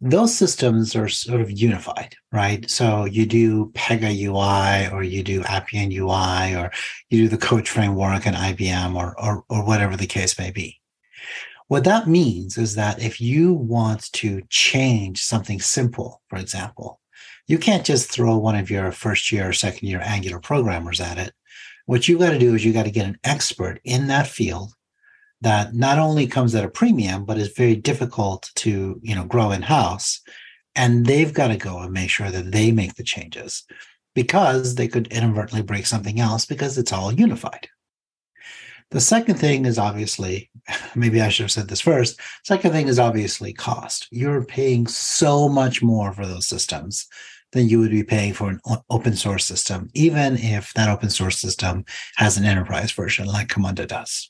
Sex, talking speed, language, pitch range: male, 180 wpm, English, 100-125 Hz